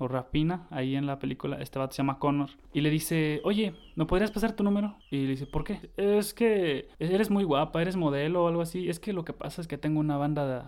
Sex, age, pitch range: male, 20-39, 135-175 Hz